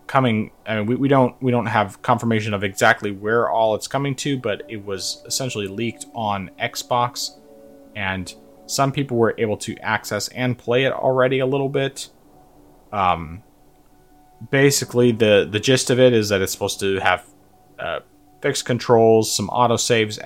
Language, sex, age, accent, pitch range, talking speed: English, male, 30-49, American, 95-125 Hz, 165 wpm